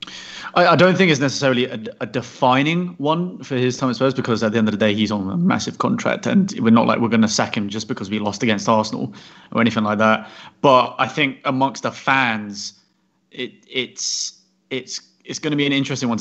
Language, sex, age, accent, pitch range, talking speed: English, male, 30-49, British, 115-145 Hz, 225 wpm